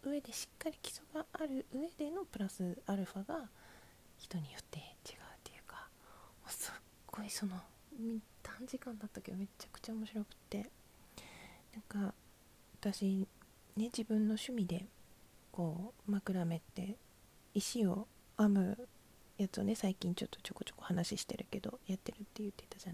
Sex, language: female, Japanese